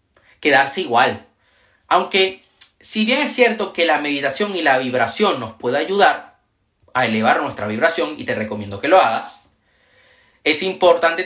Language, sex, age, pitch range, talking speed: Spanish, male, 30-49, 145-220 Hz, 150 wpm